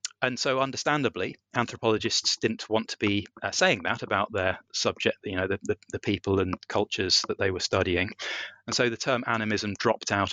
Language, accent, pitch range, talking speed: English, British, 100-125 Hz, 190 wpm